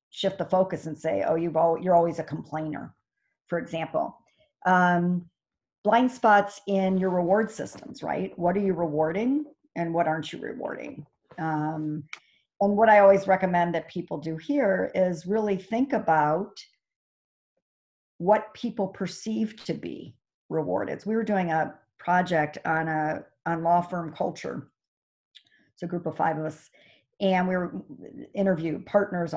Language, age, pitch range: English, 50-69, 165-205 Hz